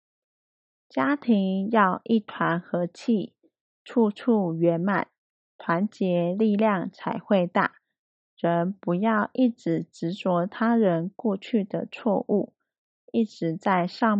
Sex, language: female, Chinese